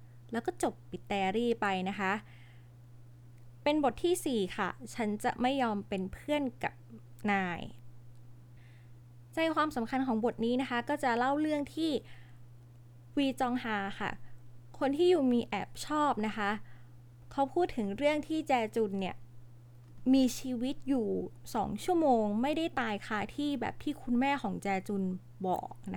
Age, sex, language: 20-39, female, Thai